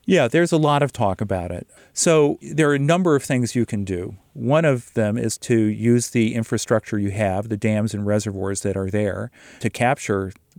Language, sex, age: English, male, 40-59